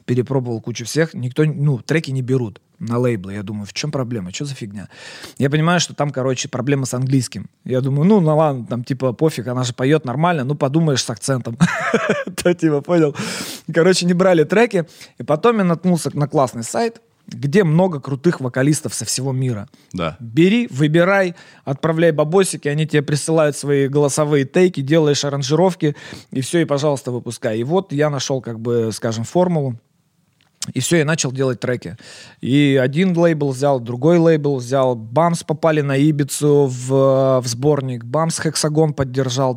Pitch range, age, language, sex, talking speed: 130-160 Hz, 20-39, Russian, male, 165 wpm